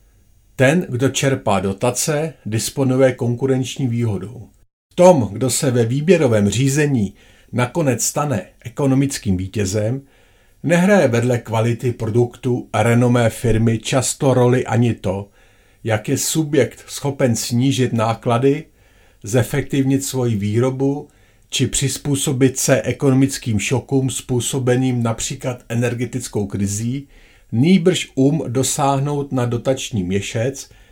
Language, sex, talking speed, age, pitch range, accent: Czech, male, 100 wpm, 50-69, 105-135 Hz, native